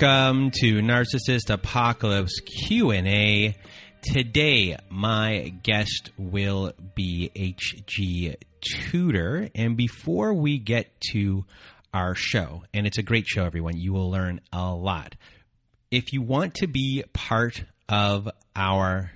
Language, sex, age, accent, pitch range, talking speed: English, male, 30-49, American, 95-120 Hz, 120 wpm